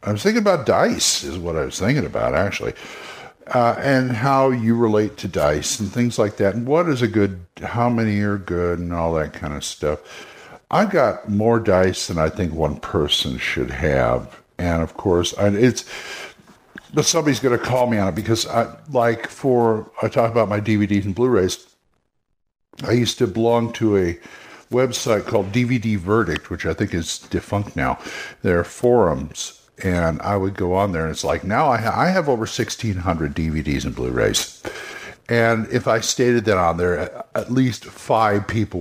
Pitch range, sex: 85-115 Hz, male